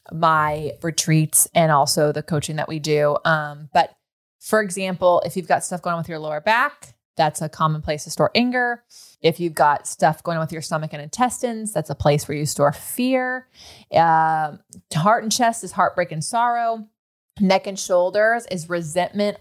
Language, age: English, 20-39